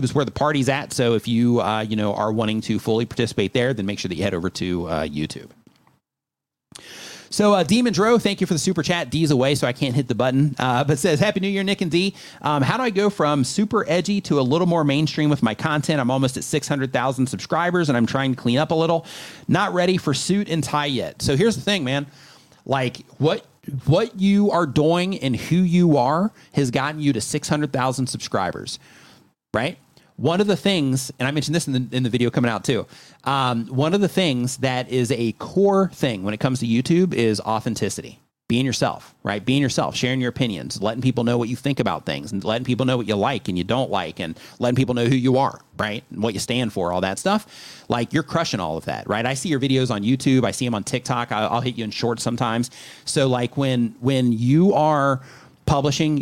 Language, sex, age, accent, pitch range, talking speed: English, male, 30-49, American, 120-155 Hz, 240 wpm